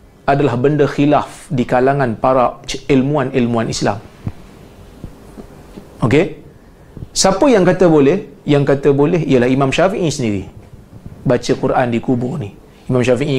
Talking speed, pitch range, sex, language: 120 wpm, 120-150 Hz, male, Malayalam